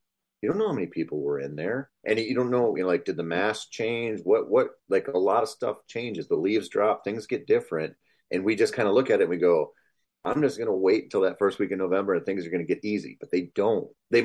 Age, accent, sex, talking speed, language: 30-49, American, male, 280 wpm, English